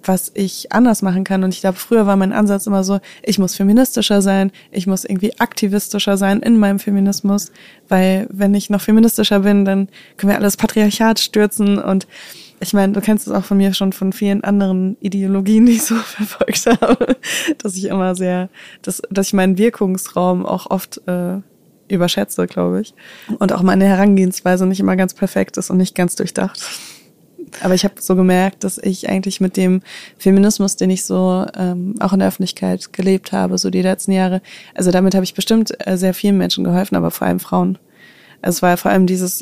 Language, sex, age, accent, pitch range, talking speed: German, female, 20-39, German, 185-205 Hz, 195 wpm